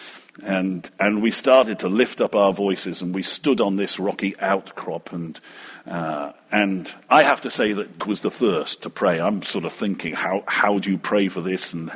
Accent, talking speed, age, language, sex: British, 205 wpm, 50-69, English, male